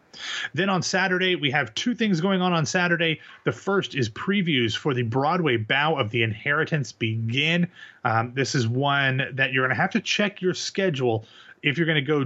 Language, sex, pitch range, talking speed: English, male, 125-160 Hz, 200 wpm